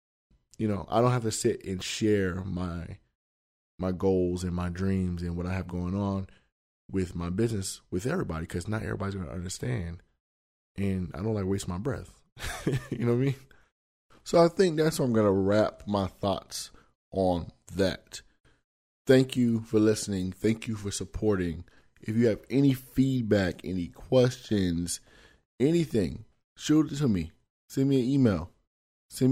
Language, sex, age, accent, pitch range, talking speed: English, male, 20-39, American, 90-110 Hz, 170 wpm